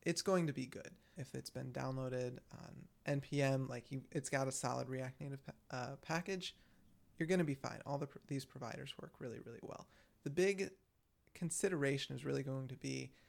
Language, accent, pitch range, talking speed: English, American, 130-150 Hz, 190 wpm